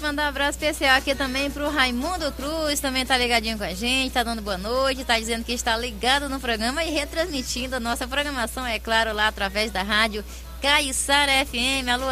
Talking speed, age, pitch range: 200 wpm, 20-39, 215-260 Hz